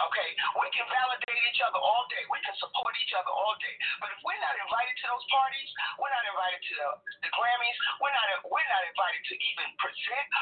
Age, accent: 40-59, American